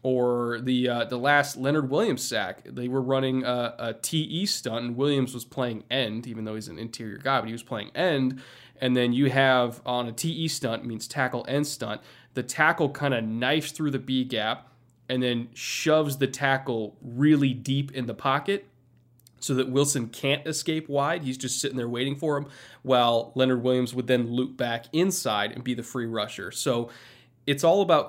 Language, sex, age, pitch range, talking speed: English, male, 20-39, 120-140 Hz, 195 wpm